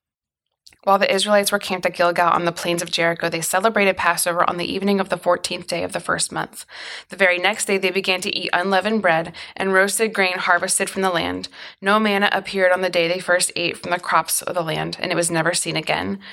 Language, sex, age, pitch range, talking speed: English, female, 20-39, 175-195 Hz, 235 wpm